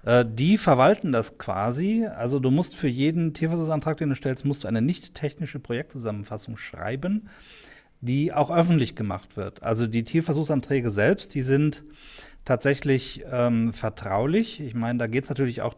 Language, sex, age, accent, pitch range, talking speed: German, male, 40-59, German, 115-140 Hz, 150 wpm